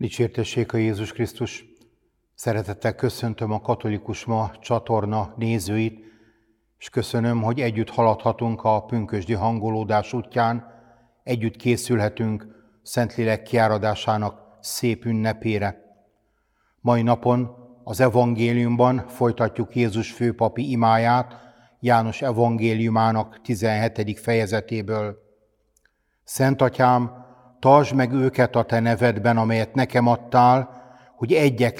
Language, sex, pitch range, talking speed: Hungarian, male, 110-130 Hz, 95 wpm